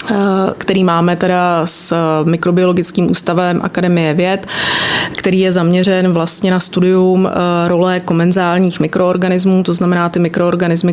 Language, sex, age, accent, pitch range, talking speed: Czech, female, 30-49, native, 170-185 Hz, 115 wpm